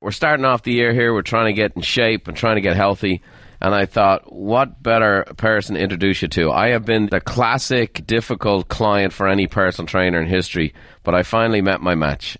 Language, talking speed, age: English, 225 wpm, 40-59